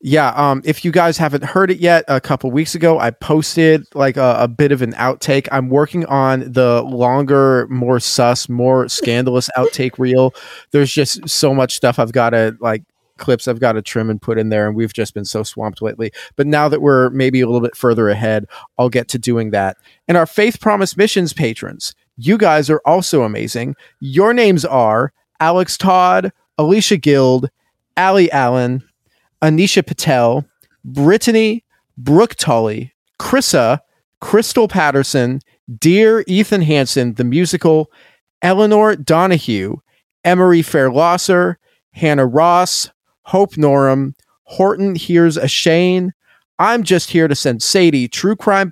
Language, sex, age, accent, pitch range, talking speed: English, male, 30-49, American, 125-180 Hz, 155 wpm